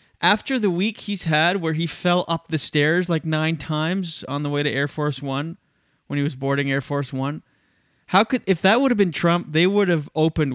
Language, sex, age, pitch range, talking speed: English, male, 20-39, 130-175 Hz, 230 wpm